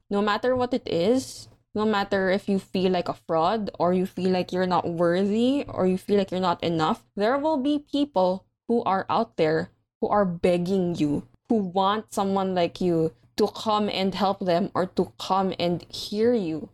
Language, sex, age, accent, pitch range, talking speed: English, female, 20-39, Filipino, 180-225 Hz, 195 wpm